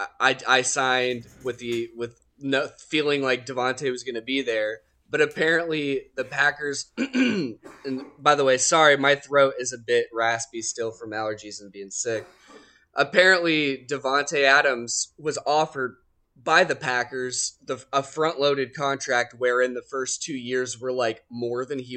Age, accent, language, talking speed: 20-39, American, English, 155 wpm